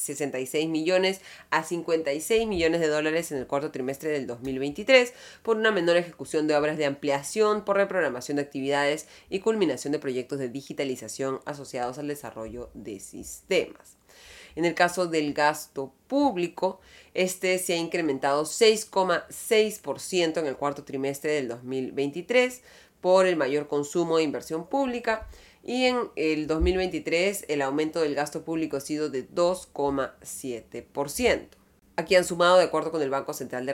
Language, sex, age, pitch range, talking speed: Spanish, female, 30-49, 140-180 Hz, 150 wpm